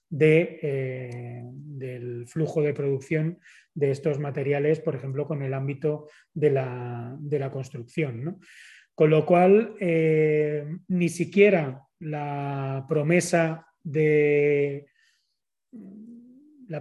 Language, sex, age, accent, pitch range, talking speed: Spanish, male, 30-49, Spanish, 140-165 Hz, 90 wpm